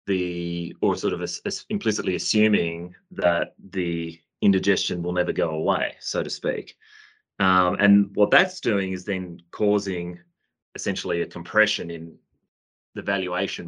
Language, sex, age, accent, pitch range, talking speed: English, male, 30-49, Australian, 85-100 Hz, 130 wpm